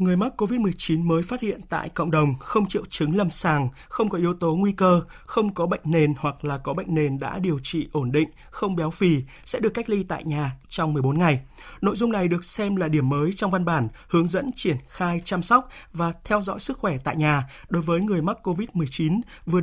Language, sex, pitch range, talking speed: Vietnamese, male, 155-195 Hz, 230 wpm